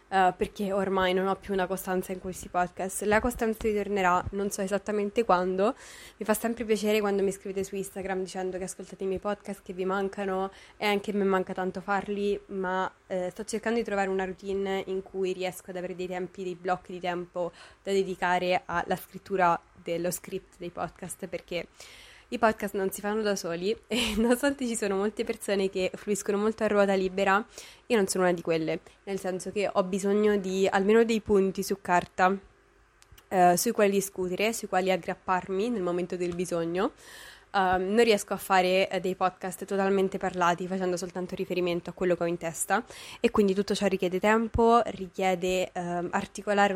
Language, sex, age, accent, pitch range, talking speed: Italian, female, 20-39, native, 185-205 Hz, 180 wpm